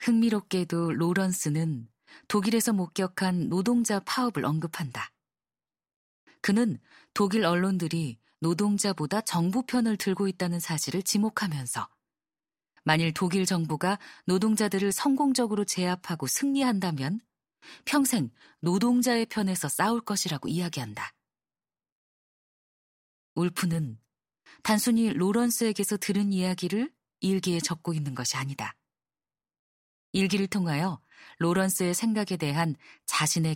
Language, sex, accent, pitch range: Korean, female, native, 160-210 Hz